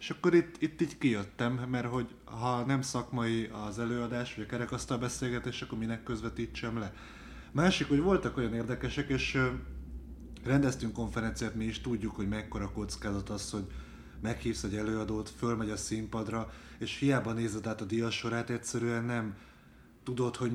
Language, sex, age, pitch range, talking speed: Hungarian, male, 20-39, 110-125 Hz, 155 wpm